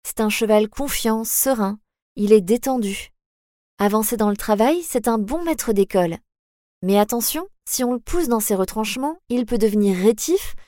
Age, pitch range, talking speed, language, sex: 20-39, 215-280 Hz, 170 wpm, French, female